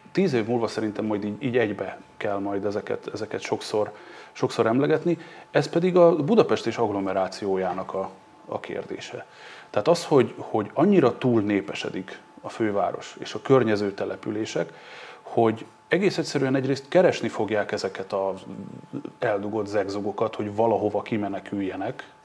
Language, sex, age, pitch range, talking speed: Hungarian, male, 30-49, 105-135 Hz, 135 wpm